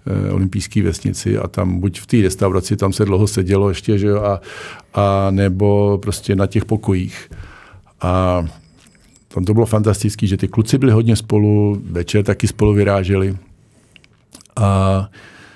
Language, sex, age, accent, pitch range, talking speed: Czech, male, 50-69, native, 95-110 Hz, 145 wpm